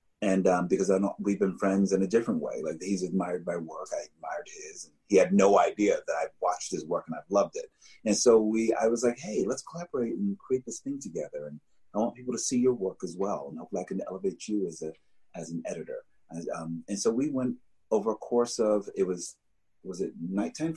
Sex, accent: male, American